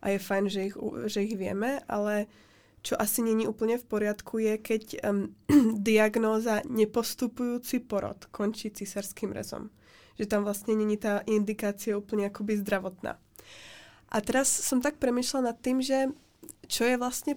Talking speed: 140 wpm